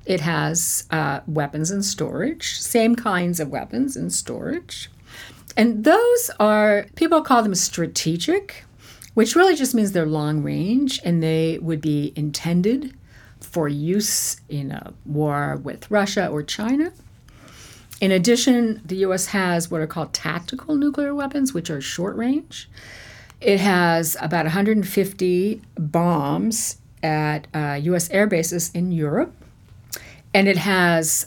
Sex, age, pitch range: female, 50-69, 155-220 Hz